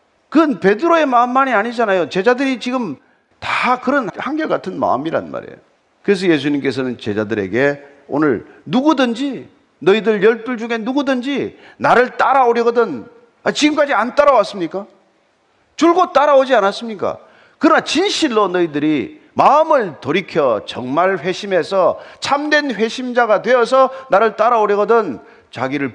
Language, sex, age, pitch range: Korean, male, 40-59, 195-280 Hz